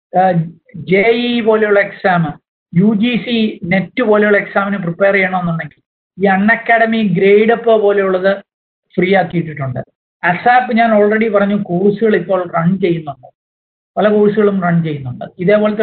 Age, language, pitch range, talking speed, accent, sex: 50-69, Malayalam, 190-235 Hz, 125 wpm, native, male